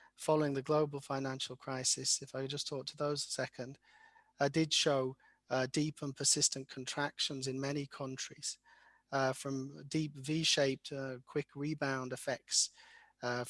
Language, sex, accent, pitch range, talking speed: English, male, British, 130-155 Hz, 140 wpm